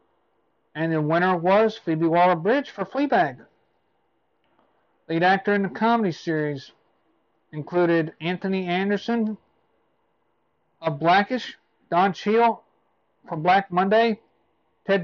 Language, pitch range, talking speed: English, 165-205 Hz, 105 wpm